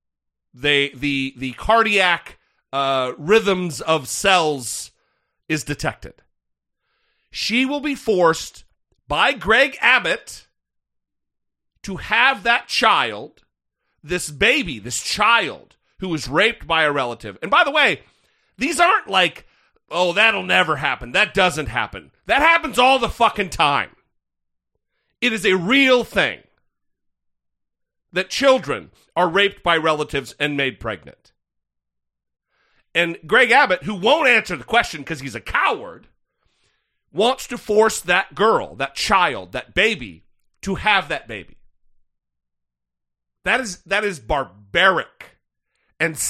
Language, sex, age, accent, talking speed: English, male, 40-59, American, 120 wpm